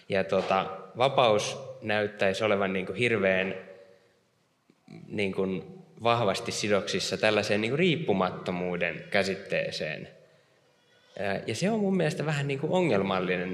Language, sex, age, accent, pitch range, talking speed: Finnish, male, 20-39, native, 95-125 Hz, 100 wpm